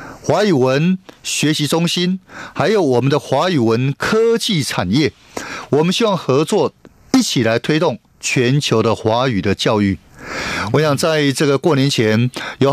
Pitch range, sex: 130-195 Hz, male